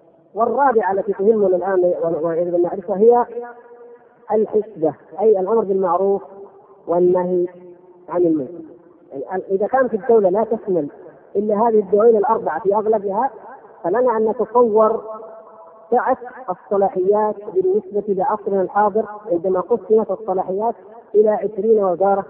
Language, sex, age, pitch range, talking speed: Arabic, female, 40-59, 185-230 Hz, 105 wpm